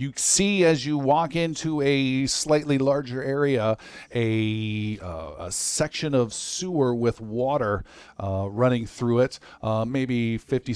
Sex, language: male, English